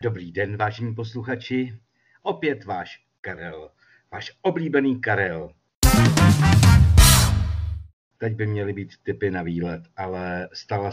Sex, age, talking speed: male, 50-69, 105 wpm